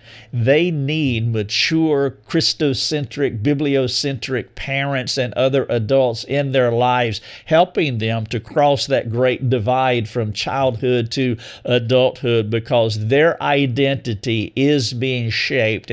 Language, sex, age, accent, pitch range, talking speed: English, male, 50-69, American, 115-140 Hz, 110 wpm